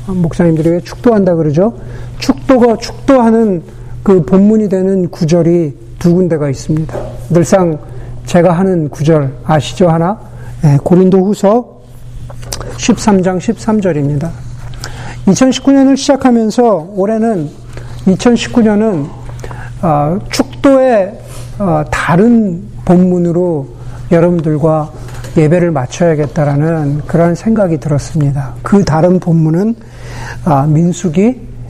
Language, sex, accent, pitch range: Korean, male, native, 125-185 Hz